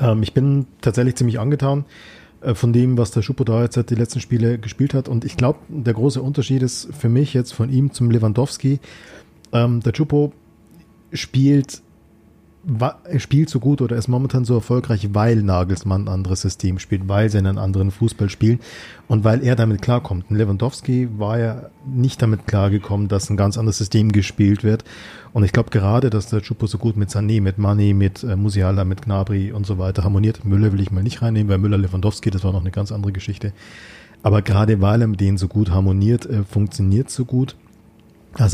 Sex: male